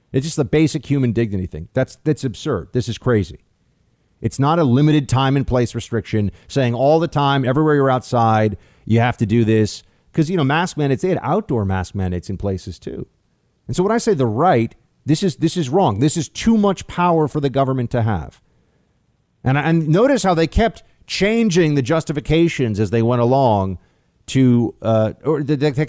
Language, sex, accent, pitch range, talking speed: English, male, American, 110-150 Hz, 195 wpm